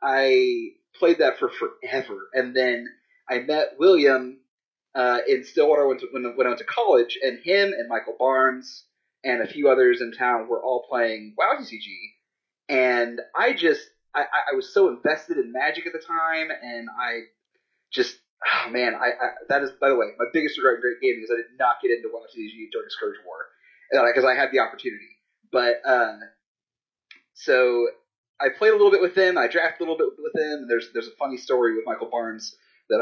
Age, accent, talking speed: 30-49, American, 200 wpm